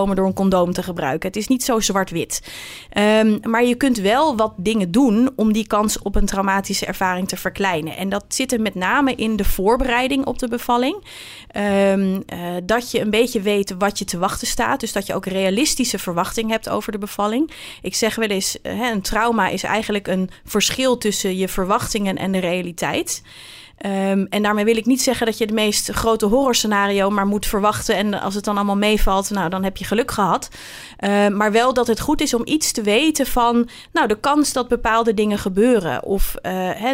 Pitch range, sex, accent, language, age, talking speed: 195-235 Hz, female, Dutch, Dutch, 30-49, 200 wpm